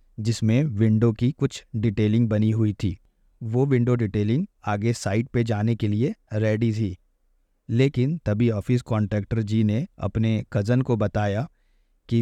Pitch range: 105-120 Hz